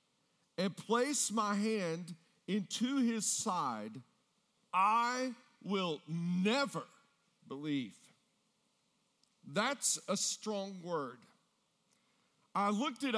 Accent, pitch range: American, 180-235 Hz